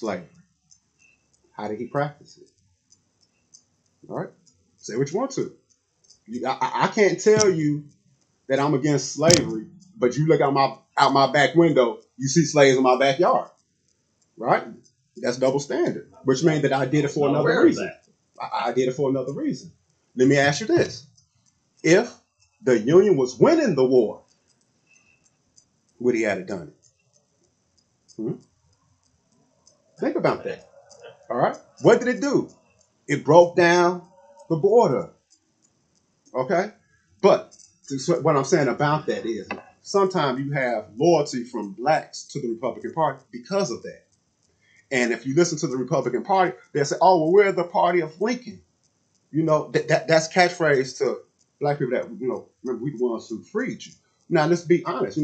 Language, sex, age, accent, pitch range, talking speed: English, male, 30-49, American, 135-180 Hz, 165 wpm